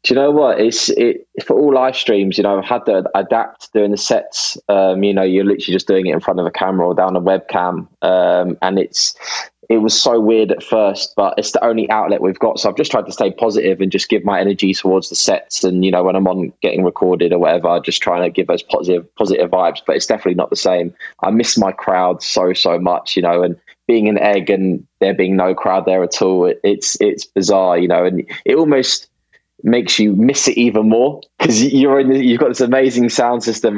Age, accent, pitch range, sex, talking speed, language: 20-39, British, 95-110 Hz, male, 245 wpm, English